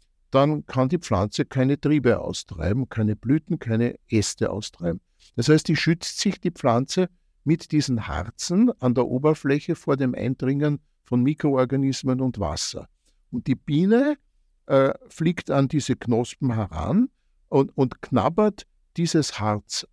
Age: 60-79